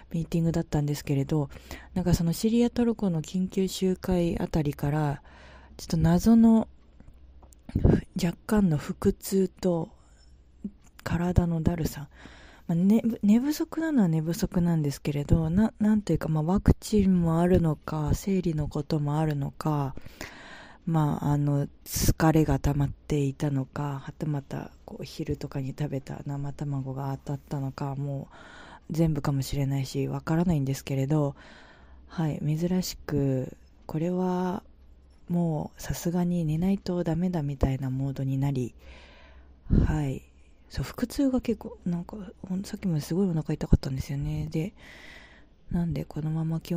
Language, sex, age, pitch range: Japanese, female, 20-39, 140-175 Hz